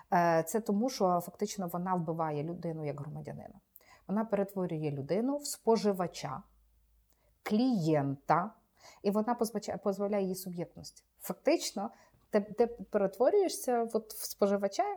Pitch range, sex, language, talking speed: 175-235 Hz, female, Ukrainian, 110 wpm